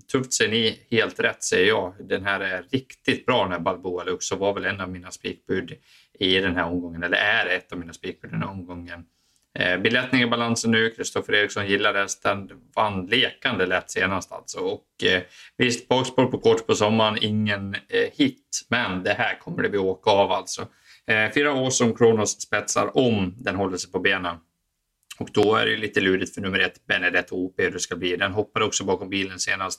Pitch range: 90-110 Hz